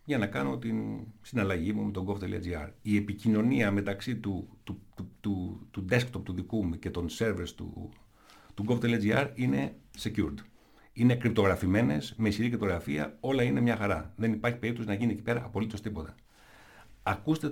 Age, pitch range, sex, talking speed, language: 60-79, 100-125 Hz, male, 165 wpm, Greek